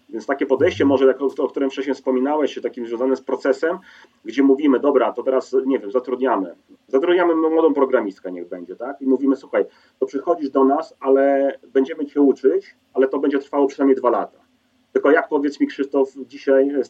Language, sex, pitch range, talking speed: Polish, male, 130-175 Hz, 190 wpm